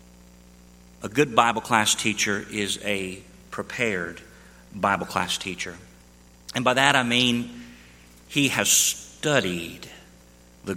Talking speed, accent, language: 110 wpm, American, English